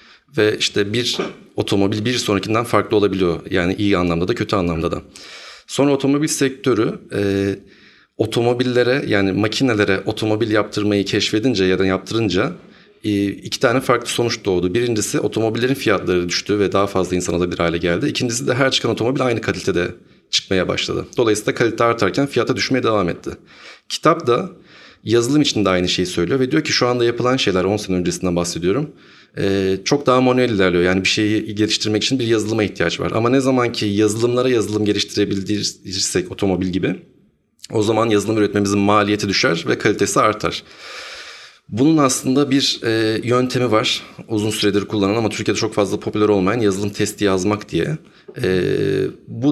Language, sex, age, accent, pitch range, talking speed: Turkish, male, 40-59, native, 100-120 Hz, 155 wpm